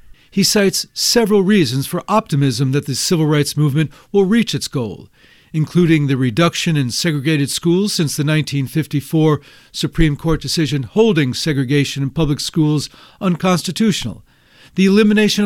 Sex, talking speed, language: male, 135 wpm, English